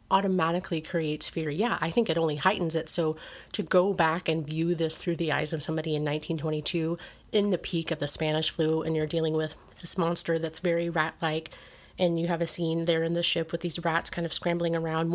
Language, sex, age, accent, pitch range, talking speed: English, female, 30-49, American, 165-185 Hz, 220 wpm